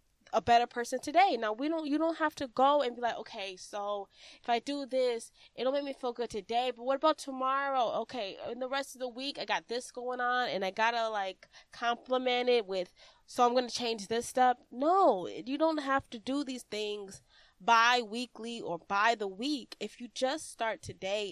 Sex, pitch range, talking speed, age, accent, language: female, 200-260 Hz, 210 wpm, 20-39, American, English